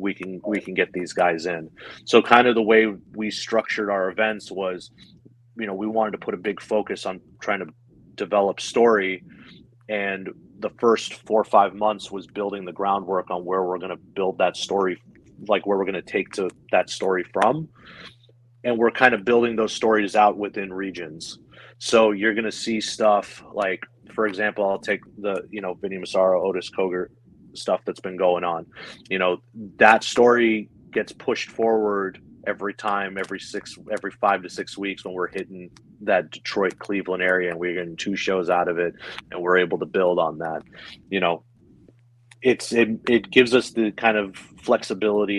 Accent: American